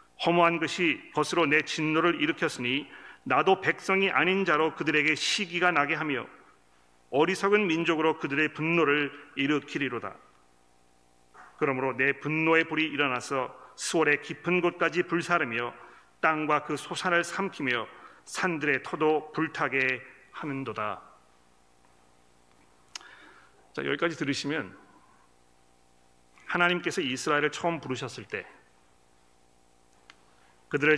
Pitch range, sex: 120-165 Hz, male